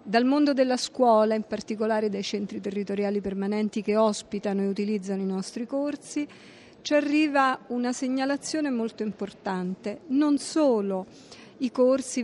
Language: Italian